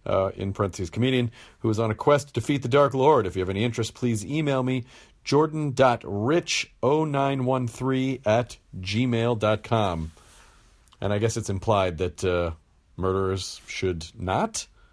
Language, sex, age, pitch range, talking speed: English, male, 40-59, 100-145 Hz, 140 wpm